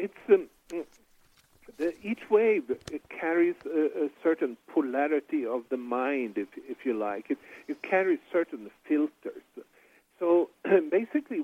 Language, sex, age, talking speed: English, male, 50-69, 125 wpm